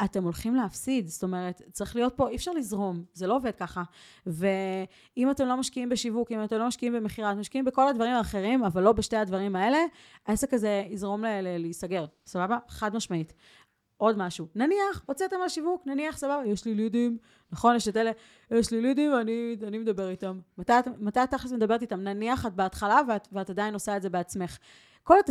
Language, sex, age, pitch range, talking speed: Hebrew, female, 30-49, 195-250 Hz, 190 wpm